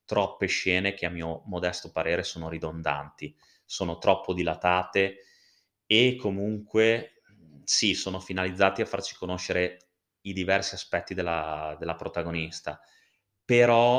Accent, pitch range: native, 85-100 Hz